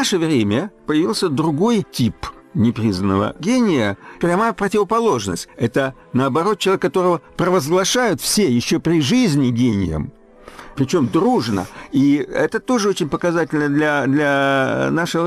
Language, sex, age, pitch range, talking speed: Russian, male, 60-79, 120-175 Hz, 120 wpm